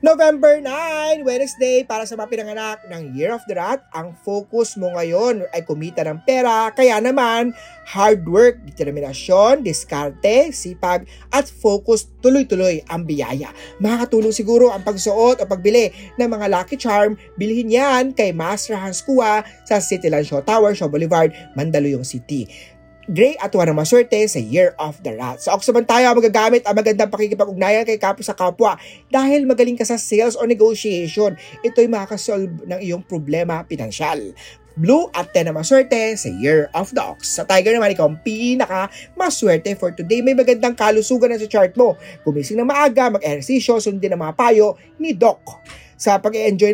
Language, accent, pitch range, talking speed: Filipino, native, 180-240 Hz, 165 wpm